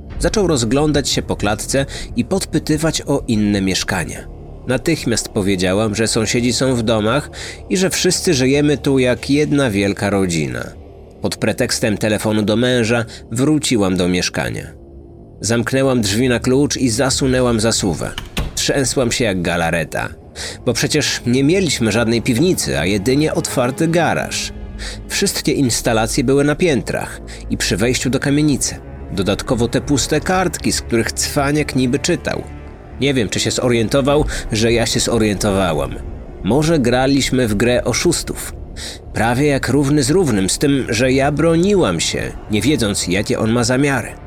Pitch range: 105-140 Hz